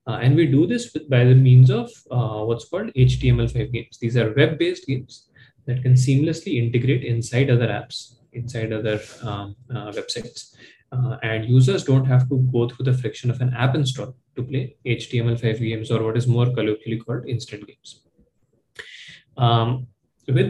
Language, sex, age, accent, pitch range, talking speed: English, male, 20-39, Indian, 120-140 Hz, 175 wpm